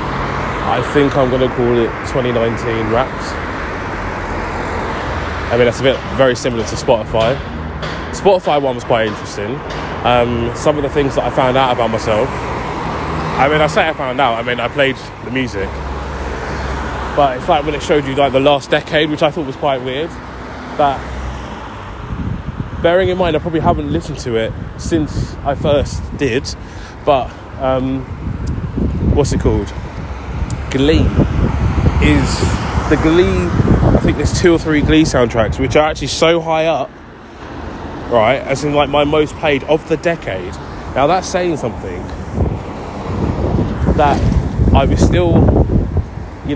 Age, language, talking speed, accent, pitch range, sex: 20-39, English, 155 wpm, British, 90-140 Hz, male